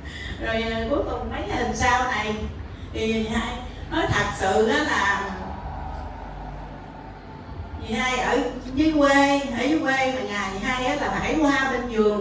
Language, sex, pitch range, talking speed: Vietnamese, female, 205-270 Hz, 155 wpm